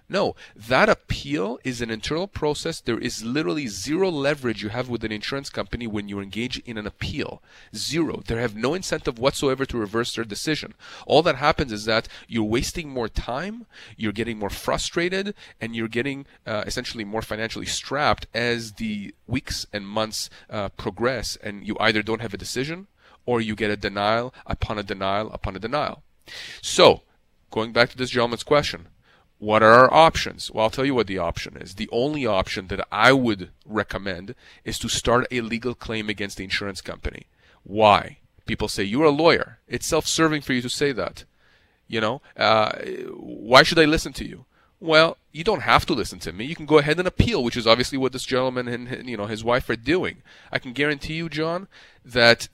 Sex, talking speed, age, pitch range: male, 195 wpm, 30-49, 105-140 Hz